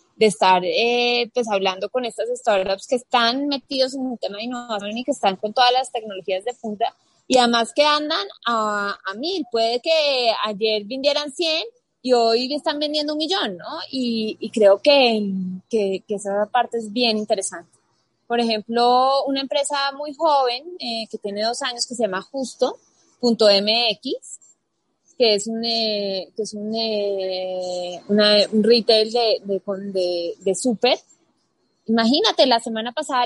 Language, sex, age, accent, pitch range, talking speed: Spanish, female, 20-39, Colombian, 210-275 Hz, 150 wpm